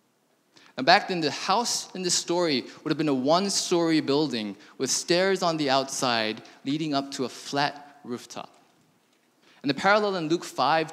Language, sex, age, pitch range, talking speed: English, male, 20-39, 140-195 Hz, 170 wpm